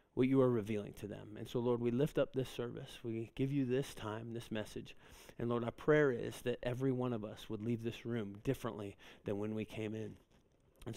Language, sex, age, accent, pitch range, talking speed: English, male, 40-59, American, 115-150 Hz, 230 wpm